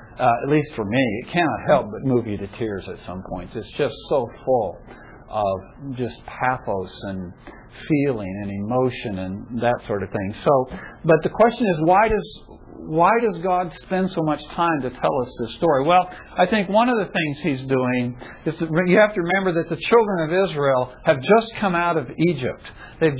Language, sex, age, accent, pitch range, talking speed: English, male, 50-69, American, 125-195 Hz, 200 wpm